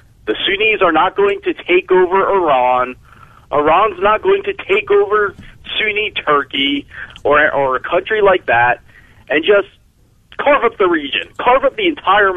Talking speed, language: 160 wpm, English